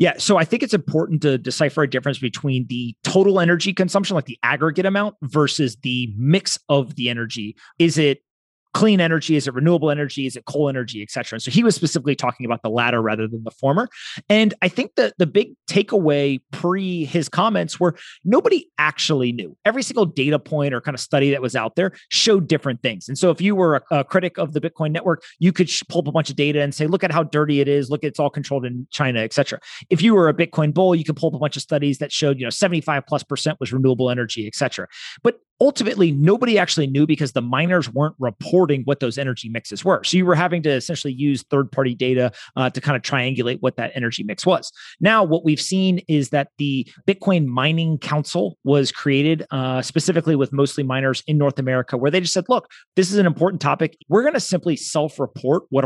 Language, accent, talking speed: English, American, 230 wpm